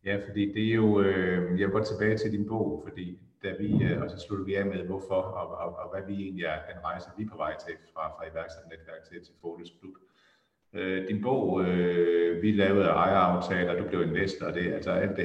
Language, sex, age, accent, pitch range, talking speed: English, male, 50-69, Danish, 90-100 Hz, 235 wpm